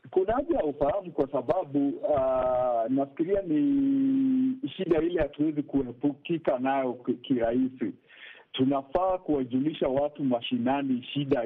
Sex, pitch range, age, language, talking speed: male, 130-165 Hz, 50-69, Swahili, 105 wpm